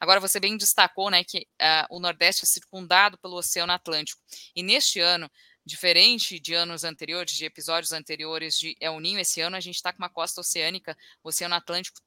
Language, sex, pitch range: Portuguese, female, 170-195 Hz